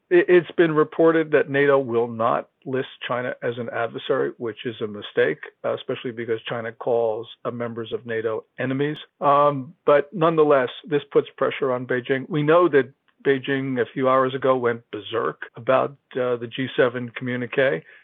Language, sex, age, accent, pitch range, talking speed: English, male, 50-69, American, 125-150 Hz, 155 wpm